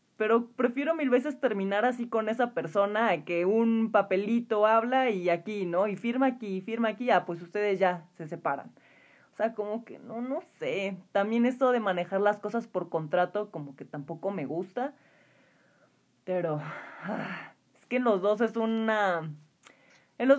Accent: Mexican